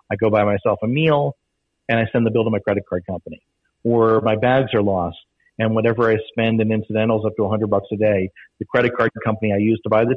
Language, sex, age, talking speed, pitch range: English, male, 50-69, 255 wpm, 105-120 Hz